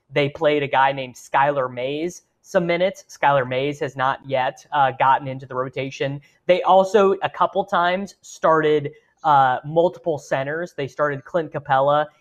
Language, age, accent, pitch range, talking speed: English, 20-39, American, 130-165 Hz, 155 wpm